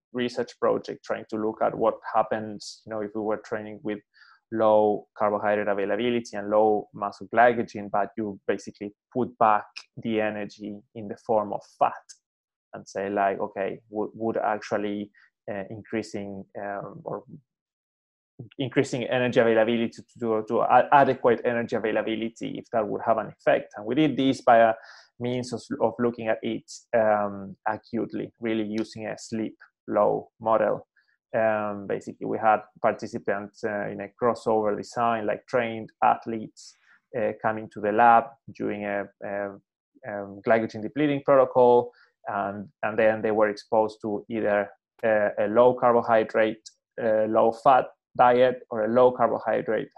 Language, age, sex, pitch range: English, 20-39, male, 105-115 Hz